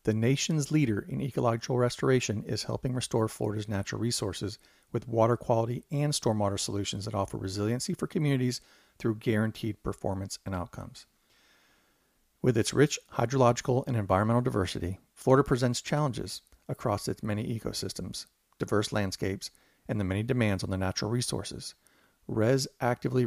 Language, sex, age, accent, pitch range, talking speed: English, male, 40-59, American, 110-130 Hz, 140 wpm